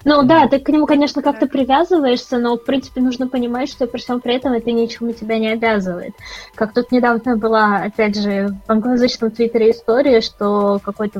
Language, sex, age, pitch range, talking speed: Russian, female, 20-39, 215-250 Hz, 190 wpm